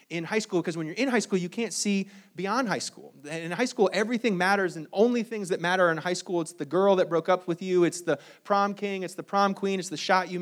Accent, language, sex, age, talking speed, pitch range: American, English, male, 20-39, 280 wpm, 165-225 Hz